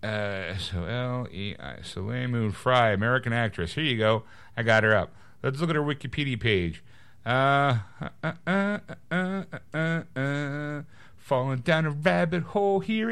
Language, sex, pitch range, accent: English, male, 95-135 Hz, American